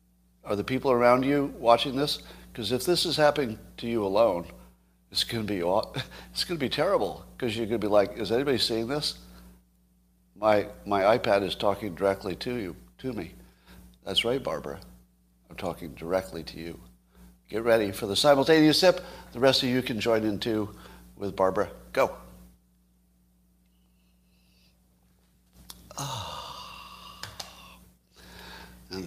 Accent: American